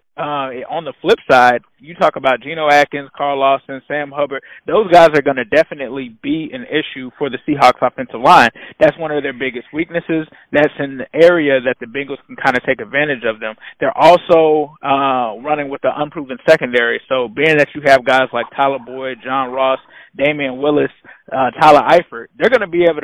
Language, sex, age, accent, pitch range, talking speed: English, male, 20-39, American, 130-155 Hz, 200 wpm